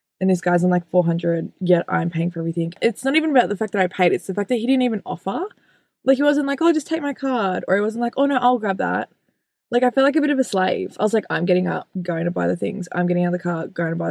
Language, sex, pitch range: English, female, 170-205 Hz